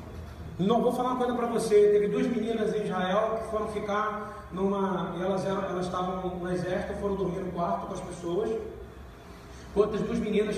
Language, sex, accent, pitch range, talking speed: Portuguese, male, Brazilian, 185-220 Hz, 180 wpm